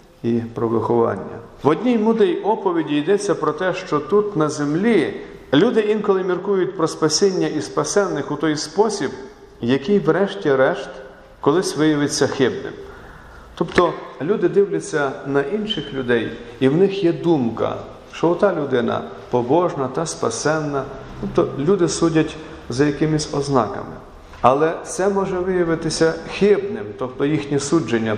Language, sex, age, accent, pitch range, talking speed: Ukrainian, male, 40-59, native, 135-200 Hz, 130 wpm